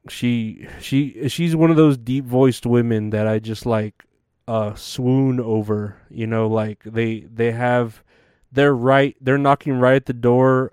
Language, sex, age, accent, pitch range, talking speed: English, male, 20-39, American, 115-140 Hz, 170 wpm